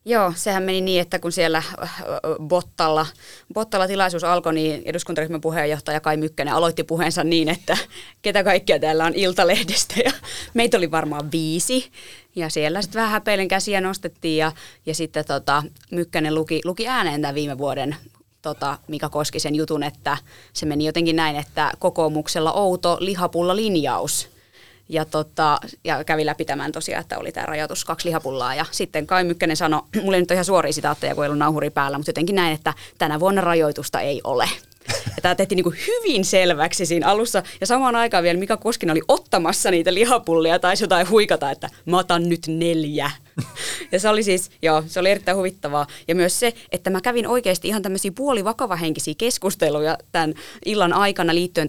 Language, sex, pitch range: Finnish, female, 155-190 Hz